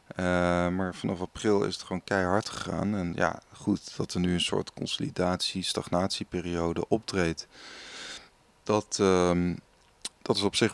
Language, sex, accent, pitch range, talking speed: Dutch, male, Dutch, 90-105 Hz, 140 wpm